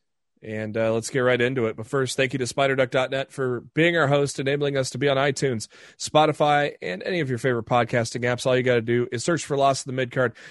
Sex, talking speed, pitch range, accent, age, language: male, 245 wpm, 115-140 Hz, American, 30-49, English